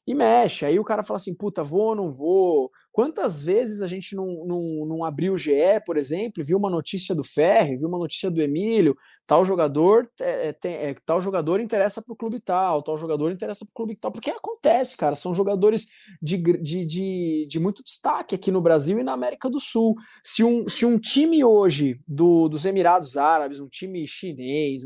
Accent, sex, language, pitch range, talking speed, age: Brazilian, male, Portuguese, 170-240 Hz, 200 wpm, 20-39